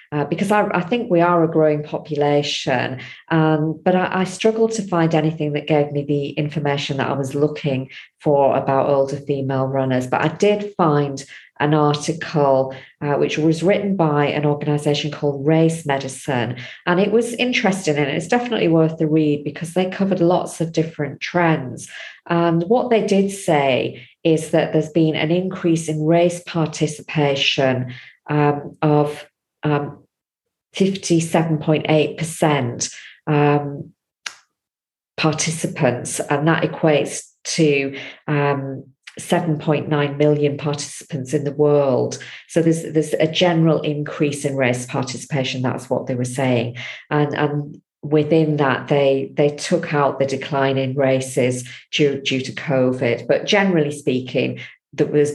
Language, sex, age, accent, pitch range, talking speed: English, female, 40-59, British, 140-165 Hz, 140 wpm